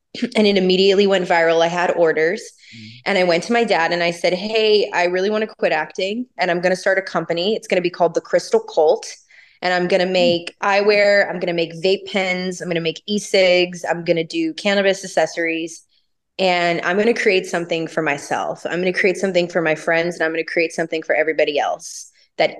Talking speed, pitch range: 235 wpm, 165-195 Hz